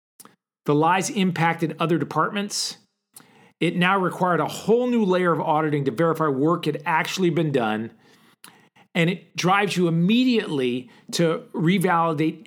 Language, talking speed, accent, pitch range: English, 135 wpm, American, 150-185 Hz